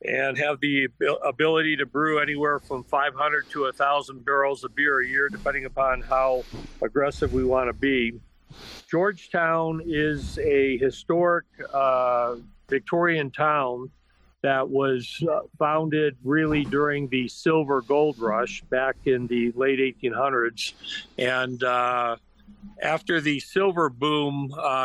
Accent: American